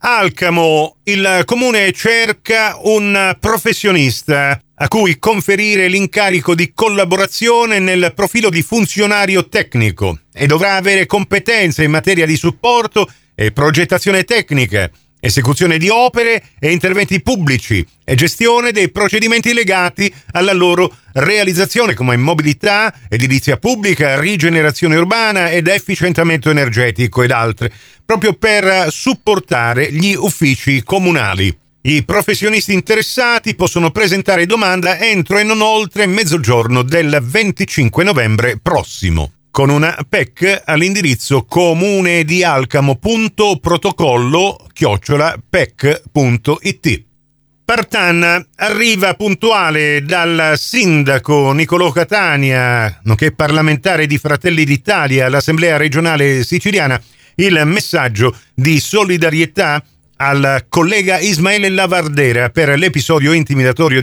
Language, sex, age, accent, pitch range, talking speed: Italian, male, 40-59, native, 140-200 Hz, 100 wpm